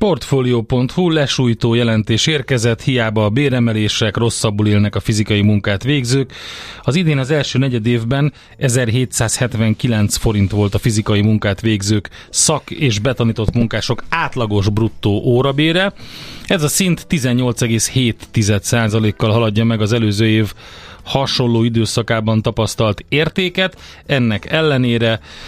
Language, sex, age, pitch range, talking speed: Hungarian, male, 30-49, 110-125 Hz, 115 wpm